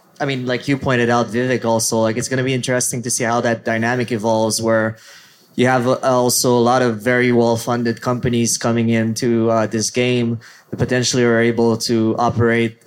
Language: English